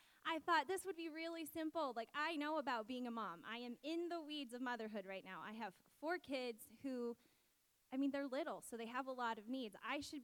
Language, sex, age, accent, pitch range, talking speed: English, female, 10-29, American, 225-280 Hz, 240 wpm